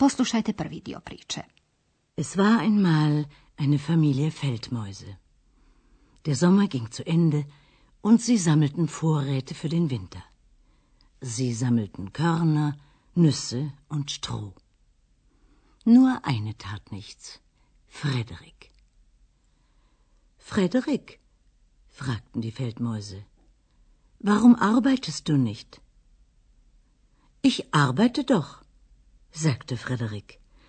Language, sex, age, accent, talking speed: Croatian, female, 60-79, German, 80 wpm